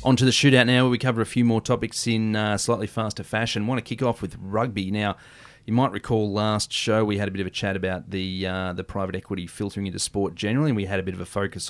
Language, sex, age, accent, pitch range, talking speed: English, male, 30-49, Australian, 95-115 Hz, 270 wpm